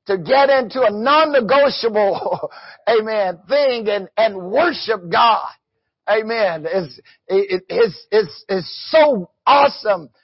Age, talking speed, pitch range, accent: 60-79, 105 wpm, 200-270 Hz, American